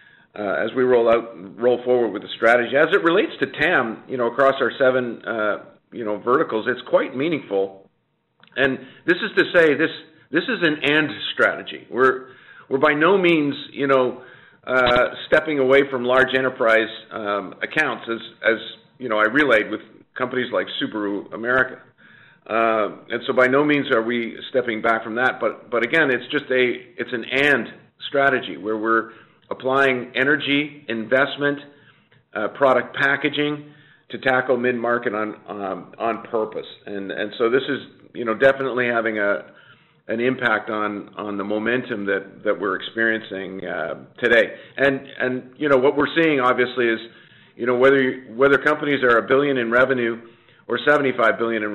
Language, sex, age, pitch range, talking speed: English, male, 50-69, 110-135 Hz, 170 wpm